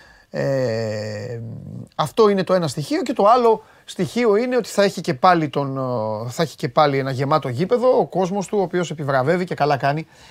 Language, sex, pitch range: Greek, male, 140-180 Hz